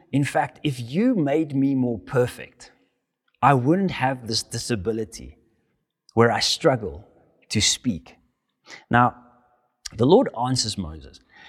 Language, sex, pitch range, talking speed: English, male, 95-130 Hz, 120 wpm